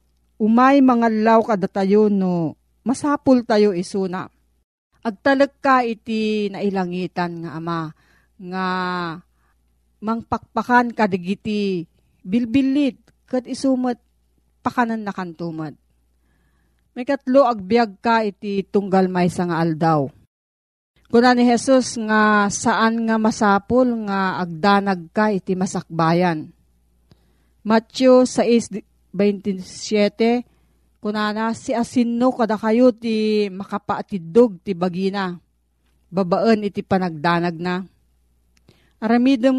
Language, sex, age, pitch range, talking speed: Filipino, female, 40-59, 170-230 Hz, 95 wpm